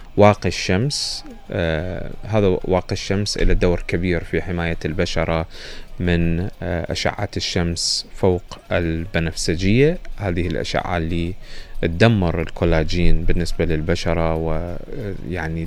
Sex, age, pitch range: male, 20-39, 85-105 Hz